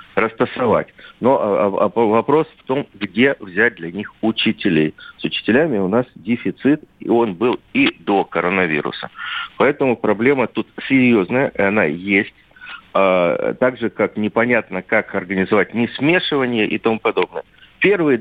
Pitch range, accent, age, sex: 100-135 Hz, native, 50-69, male